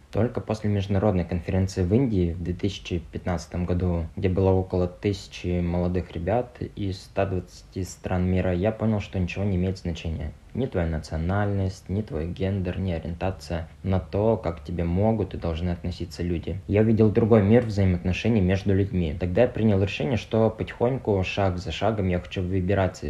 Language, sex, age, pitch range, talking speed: Russian, male, 20-39, 90-110 Hz, 165 wpm